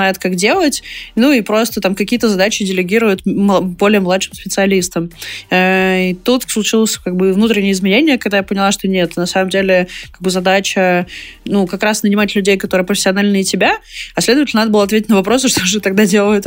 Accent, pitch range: native, 190-215 Hz